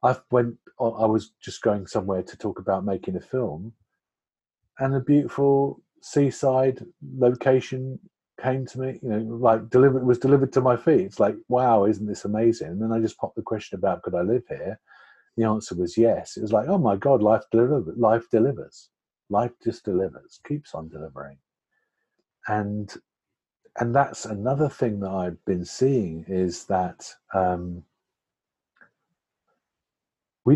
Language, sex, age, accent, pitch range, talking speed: English, male, 50-69, British, 105-130 Hz, 160 wpm